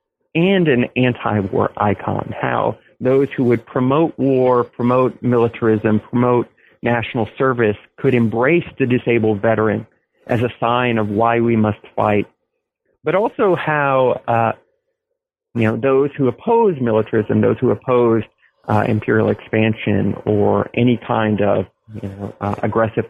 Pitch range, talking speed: 105-130 Hz, 135 wpm